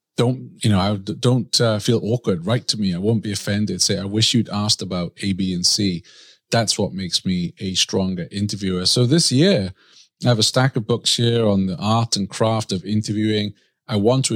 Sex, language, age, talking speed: male, English, 30-49, 215 wpm